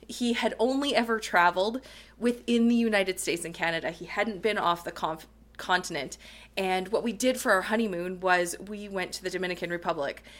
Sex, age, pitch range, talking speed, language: female, 20-39, 200-270 Hz, 185 wpm, English